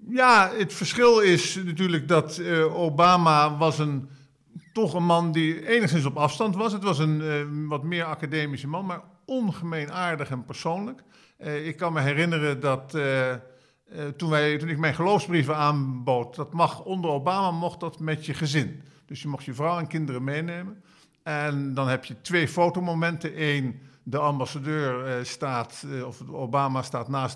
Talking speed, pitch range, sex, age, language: 170 wpm, 140-170 Hz, male, 50-69, Dutch